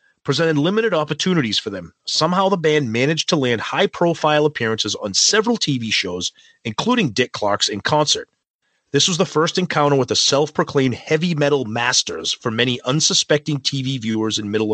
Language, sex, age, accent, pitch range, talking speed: English, male, 30-49, American, 115-155 Hz, 165 wpm